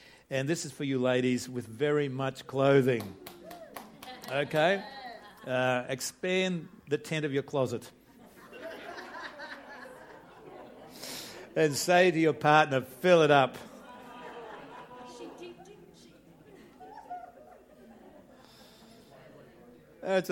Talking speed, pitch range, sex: 80 wpm, 130-165 Hz, male